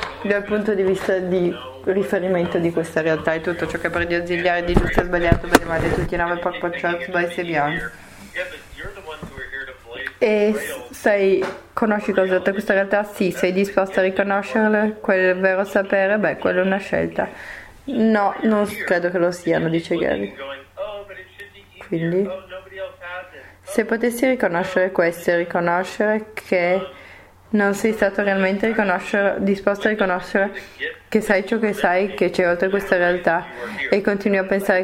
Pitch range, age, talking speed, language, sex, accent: 180-215 Hz, 20-39, 150 wpm, English, female, Italian